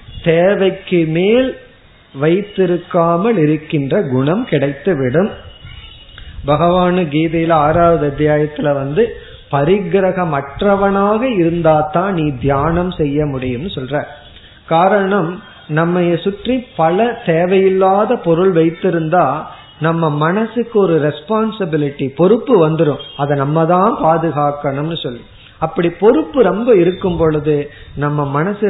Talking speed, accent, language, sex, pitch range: 90 wpm, native, Tamil, male, 145-185 Hz